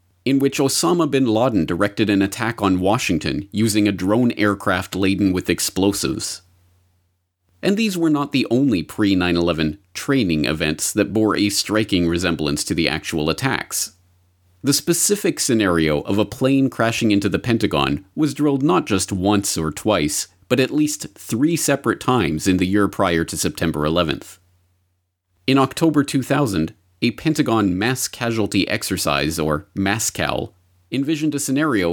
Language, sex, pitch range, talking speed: English, male, 90-120 Hz, 150 wpm